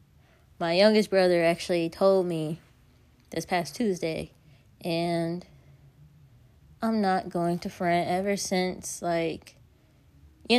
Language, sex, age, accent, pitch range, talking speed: English, female, 20-39, American, 140-180 Hz, 110 wpm